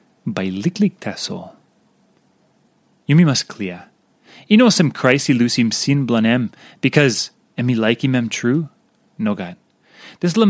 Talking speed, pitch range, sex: 135 wpm, 135-200 Hz, male